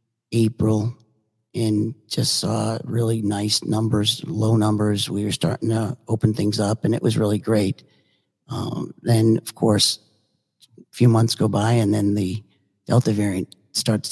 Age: 50-69